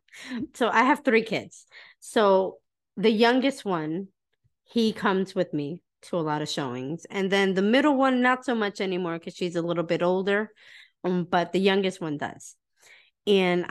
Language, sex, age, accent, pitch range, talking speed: English, female, 30-49, American, 165-225 Hz, 170 wpm